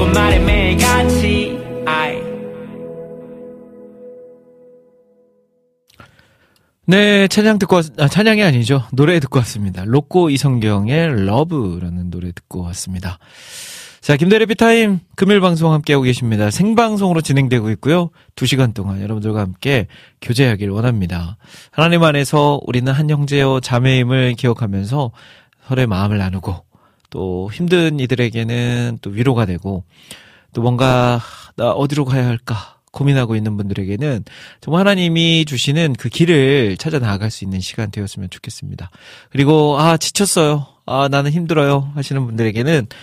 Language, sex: Korean, male